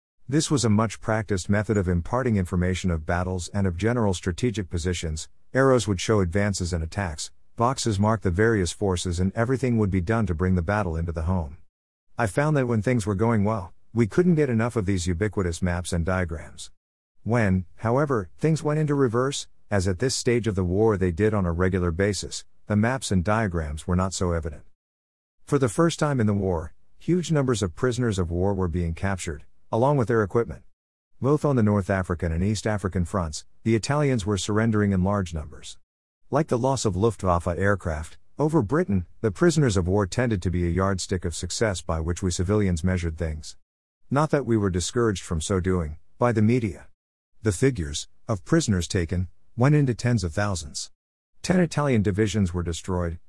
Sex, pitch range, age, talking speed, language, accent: male, 85-115 Hz, 50-69, 190 wpm, English, American